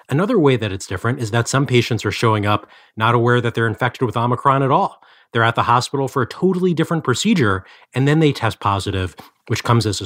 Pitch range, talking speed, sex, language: 105-130 Hz, 235 wpm, male, English